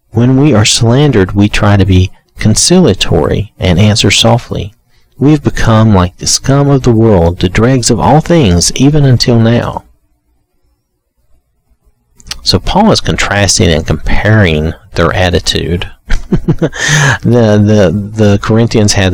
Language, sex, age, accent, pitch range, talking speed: English, male, 50-69, American, 80-105 Hz, 130 wpm